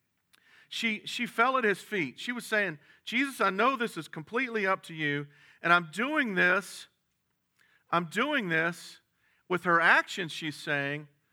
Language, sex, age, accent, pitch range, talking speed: English, male, 50-69, American, 150-195 Hz, 160 wpm